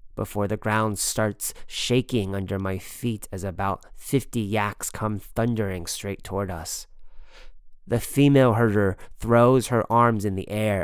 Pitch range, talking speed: 95-115 Hz, 145 wpm